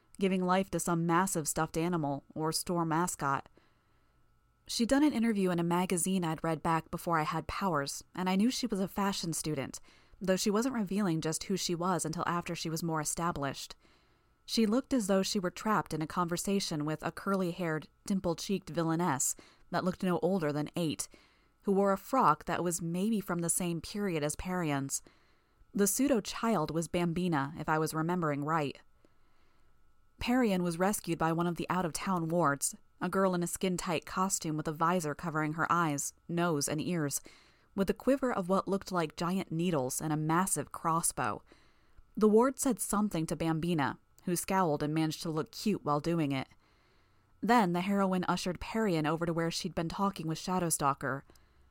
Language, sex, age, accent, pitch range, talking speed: English, female, 20-39, American, 155-195 Hz, 180 wpm